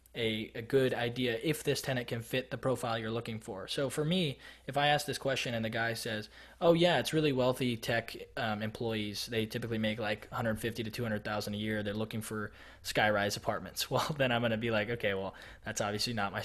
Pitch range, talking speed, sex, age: 110-130 Hz, 225 wpm, male, 20-39